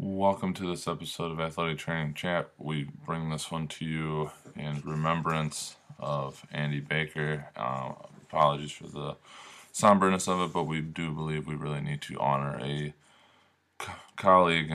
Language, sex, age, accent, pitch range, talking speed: English, male, 20-39, American, 75-80 Hz, 150 wpm